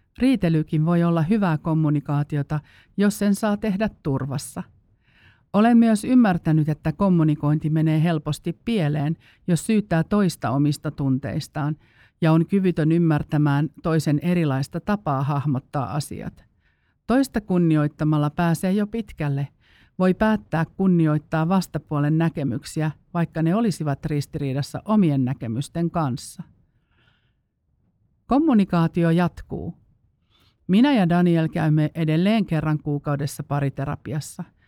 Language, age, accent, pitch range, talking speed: Finnish, 50-69, native, 145-175 Hz, 100 wpm